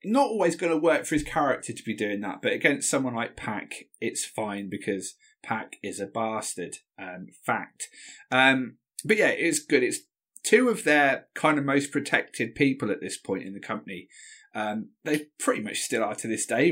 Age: 20-39